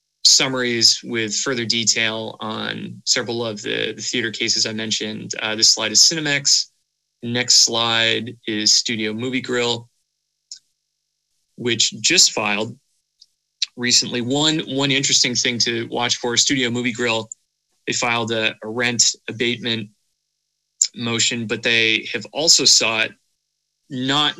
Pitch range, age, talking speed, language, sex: 110-130 Hz, 20-39, 125 wpm, English, male